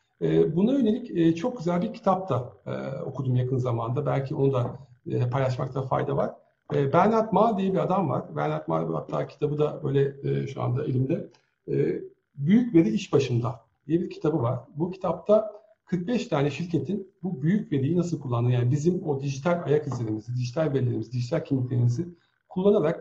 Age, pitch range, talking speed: 50-69, 130-185 Hz, 150 wpm